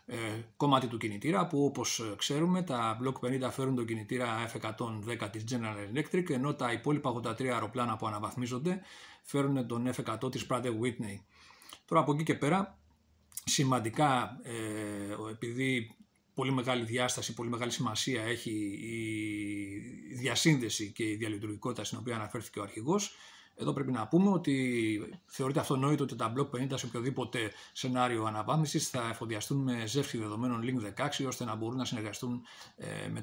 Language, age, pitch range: Greek, 40-59, 110-130 Hz